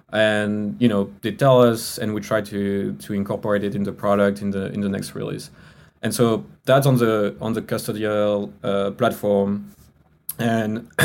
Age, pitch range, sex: 20-39, 100-110 Hz, male